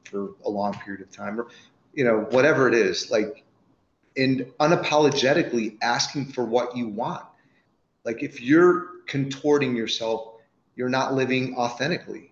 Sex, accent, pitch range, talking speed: male, American, 120-150 Hz, 140 wpm